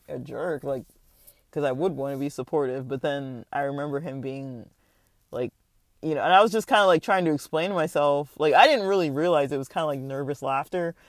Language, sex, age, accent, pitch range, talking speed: English, male, 20-39, American, 135-170 Hz, 225 wpm